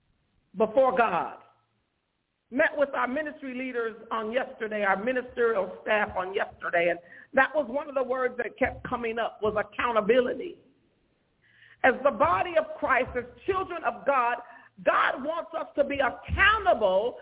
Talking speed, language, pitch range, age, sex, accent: 145 wpm, English, 260-360 Hz, 50-69, female, American